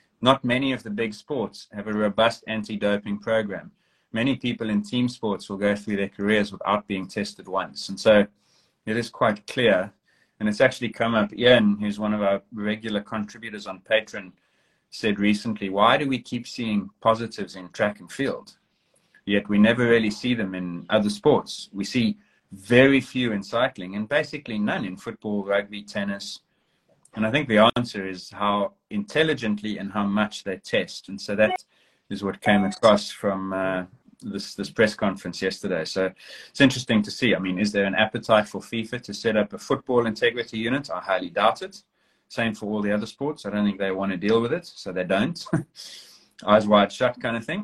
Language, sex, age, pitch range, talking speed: English, male, 30-49, 100-125 Hz, 195 wpm